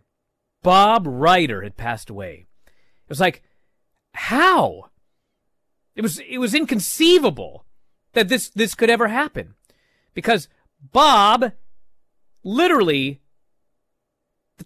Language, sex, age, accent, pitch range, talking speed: English, male, 30-49, American, 125-210 Hz, 100 wpm